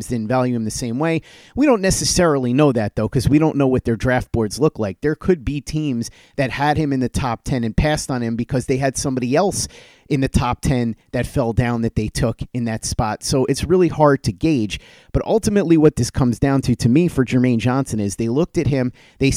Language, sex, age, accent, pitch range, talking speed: English, male, 30-49, American, 115-150 Hz, 245 wpm